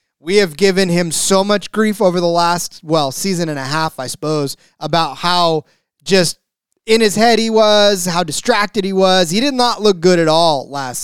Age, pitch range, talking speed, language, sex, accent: 20-39, 160-200 Hz, 200 wpm, English, male, American